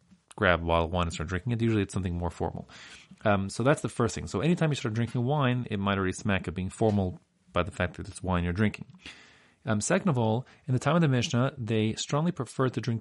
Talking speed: 260 wpm